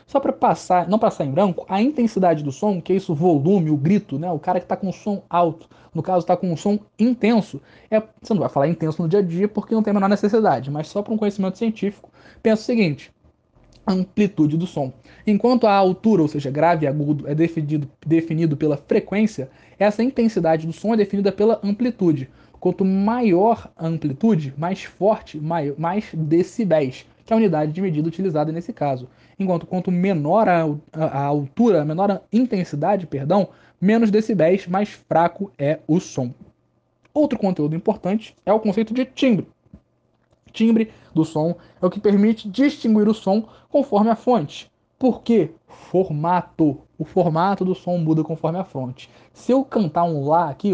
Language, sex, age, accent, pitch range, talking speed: Portuguese, male, 20-39, Brazilian, 160-210 Hz, 185 wpm